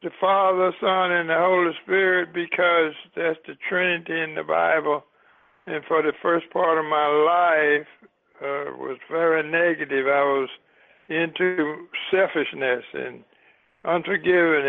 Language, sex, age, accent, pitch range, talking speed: English, male, 60-79, American, 150-175 Hz, 130 wpm